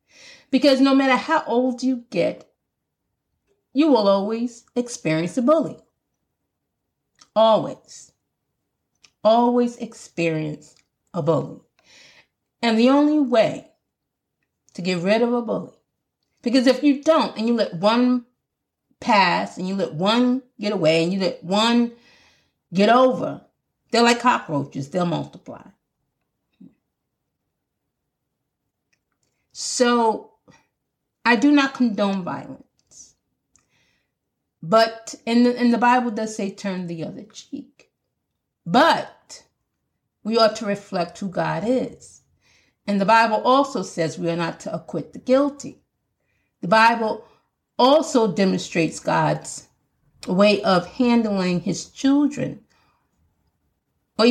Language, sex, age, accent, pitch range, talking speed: English, female, 40-59, American, 185-250 Hz, 115 wpm